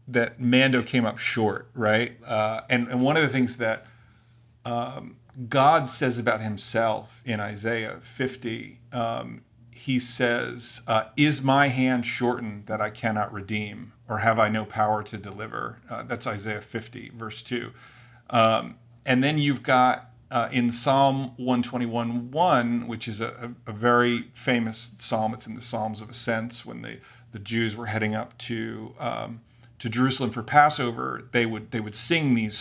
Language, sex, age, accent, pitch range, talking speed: English, male, 40-59, American, 110-125 Hz, 160 wpm